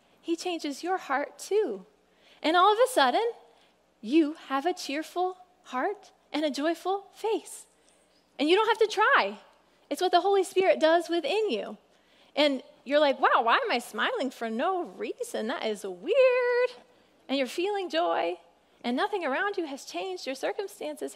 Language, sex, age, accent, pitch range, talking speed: English, female, 20-39, American, 275-370 Hz, 165 wpm